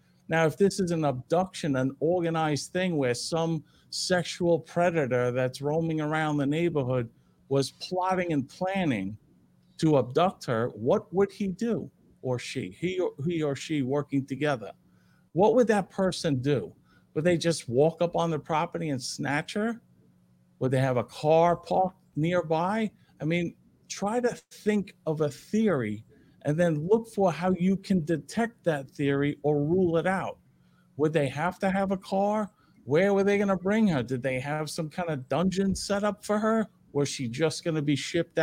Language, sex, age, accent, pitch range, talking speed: English, male, 50-69, American, 140-185 Hz, 180 wpm